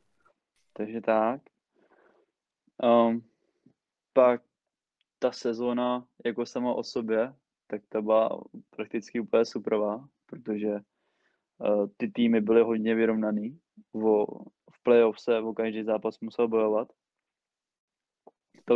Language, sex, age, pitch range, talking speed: Czech, male, 20-39, 110-120 Hz, 100 wpm